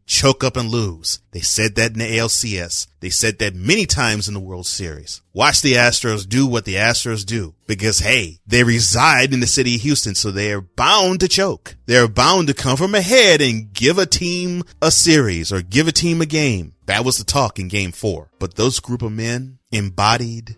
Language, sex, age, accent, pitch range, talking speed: English, male, 30-49, American, 95-125 Hz, 215 wpm